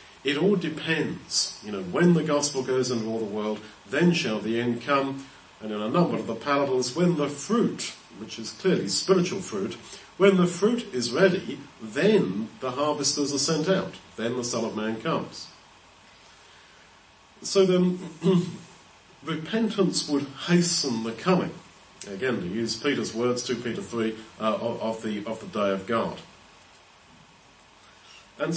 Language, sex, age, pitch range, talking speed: English, male, 40-59, 120-175 Hz, 155 wpm